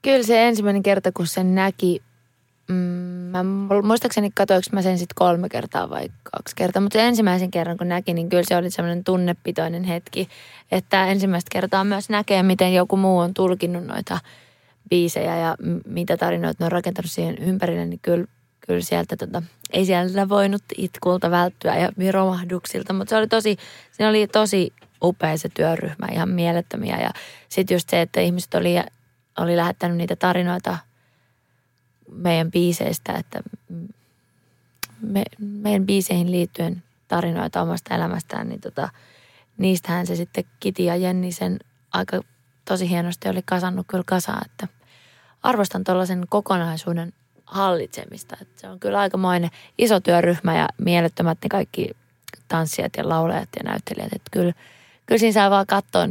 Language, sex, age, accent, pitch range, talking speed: Finnish, female, 20-39, native, 170-195 Hz, 150 wpm